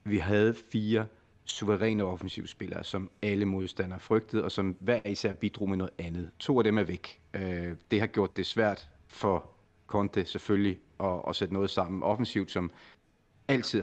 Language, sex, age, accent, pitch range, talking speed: Danish, male, 30-49, native, 95-110 Hz, 160 wpm